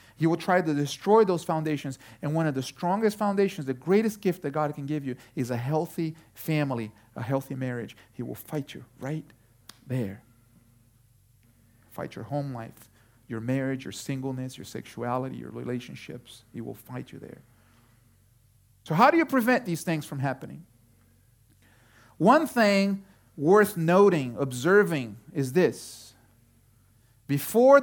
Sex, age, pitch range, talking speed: male, 40-59, 115-180 Hz, 145 wpm